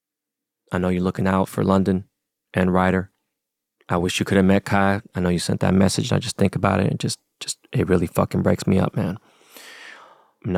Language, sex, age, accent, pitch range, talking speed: English, male, 20-39, American, 95-105 Hz, 215 wpm